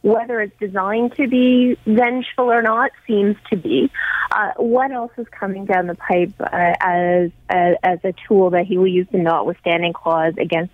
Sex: female